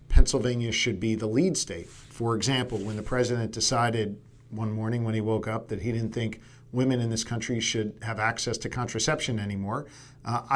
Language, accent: English, American